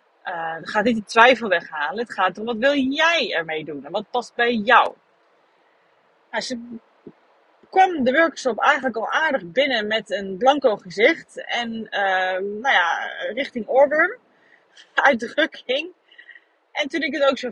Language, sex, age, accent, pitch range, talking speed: Dutch, female, 30-49, Dutch, 210-295 Hz, 160 wpm